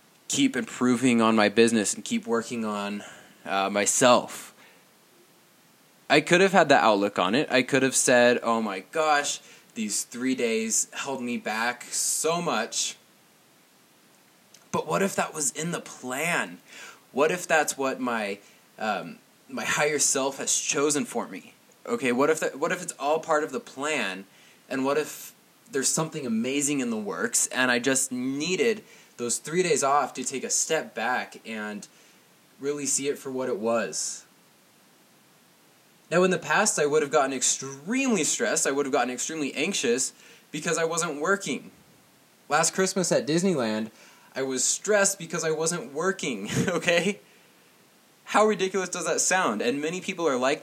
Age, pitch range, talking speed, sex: 20-39, 125-185 Hz, 165 wpm, male